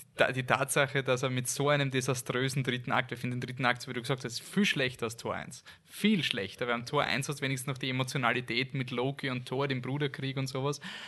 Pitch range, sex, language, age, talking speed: 120-140 Hz, male, German, 20-39, 240 wpm